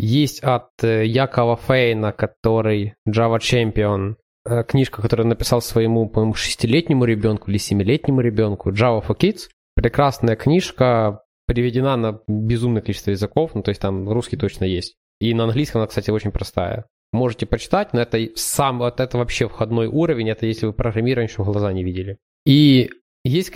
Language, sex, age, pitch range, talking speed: Ukrainian, male, 20-39, 110-135 Hz, 160 wpm